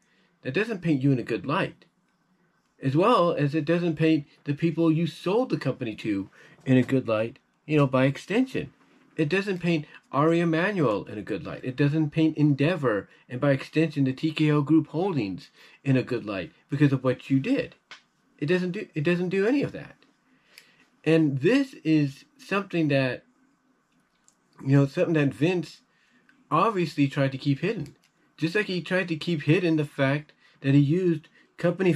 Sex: male